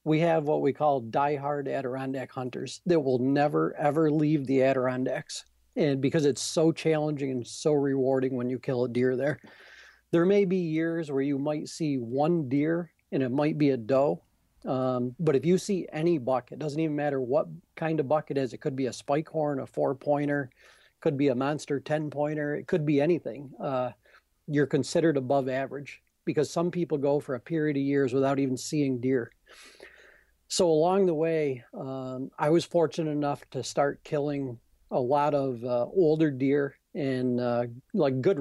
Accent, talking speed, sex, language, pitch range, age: American, 190 wpm, male, English, 130-155 Hz, 40-59